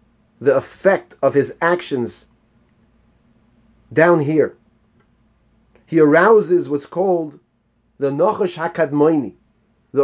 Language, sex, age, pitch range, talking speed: English, male, 30-49, 115-165 Hz, 90 wpm